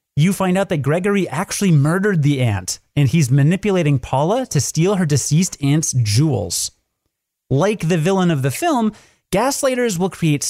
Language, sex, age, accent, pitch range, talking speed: English, male, 30-49, American, 125-180 Hz, 160 wpm